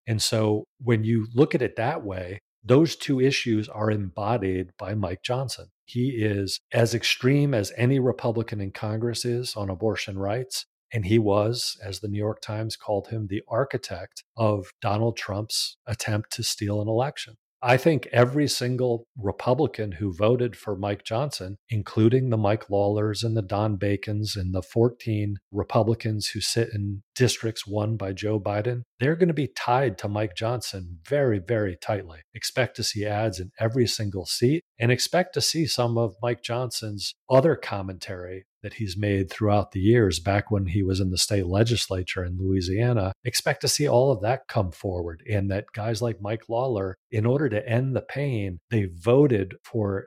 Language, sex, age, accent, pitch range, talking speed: English, male, 40-59, American, 100-120 Hz, 175 wpm